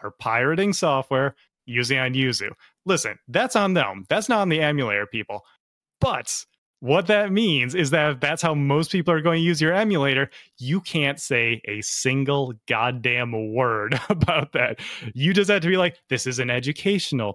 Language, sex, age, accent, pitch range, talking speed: English, male, 20-39, American, 125-175 Hz, 175 wpm